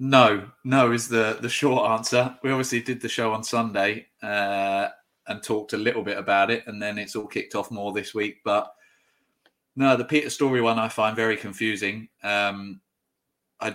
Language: English